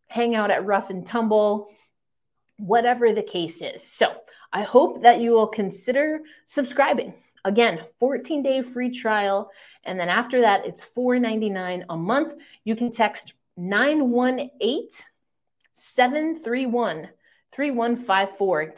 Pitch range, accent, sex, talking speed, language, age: 185-250 Hz, American, female, 120 wpm, English, 30-49